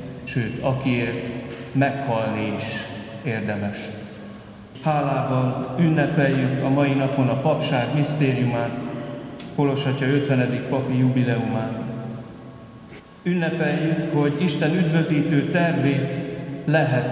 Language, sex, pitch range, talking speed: Hungarian, male, 120-150 Hz, 80 wpm